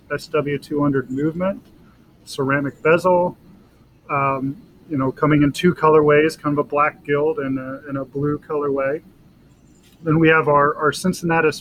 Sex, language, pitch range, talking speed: male, English, 140-155 Hz, 145 wpm